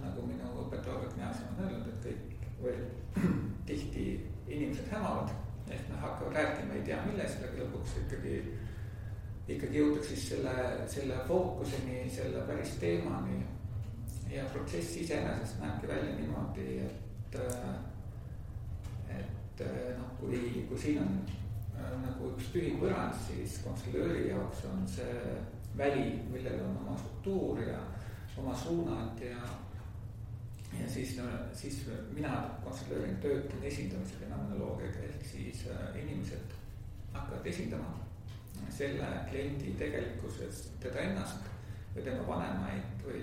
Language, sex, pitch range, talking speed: English, male, 100-125 Hz, 120 wpm